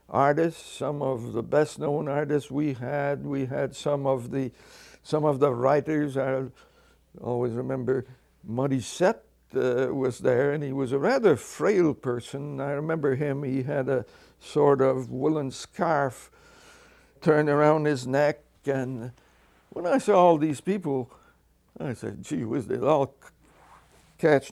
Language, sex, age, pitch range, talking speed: English, male, 60-79, 130-155 Hz, 145 wpm